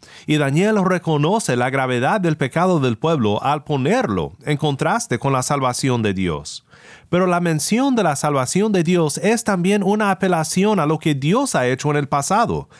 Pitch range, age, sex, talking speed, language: 130-185 Hz, 40-59, male, 185 wpm, Spanish